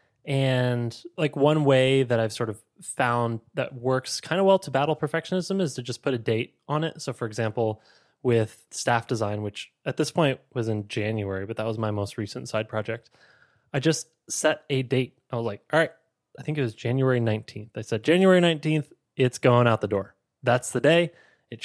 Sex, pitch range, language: male, 115-150 Hz, English